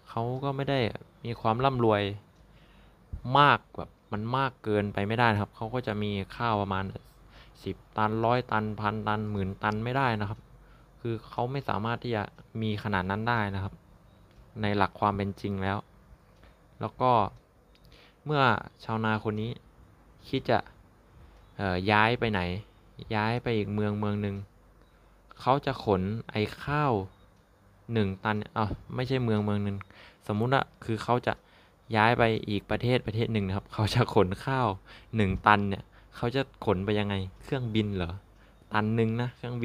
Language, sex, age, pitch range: Thai, male, 20-39, 100-115 Hz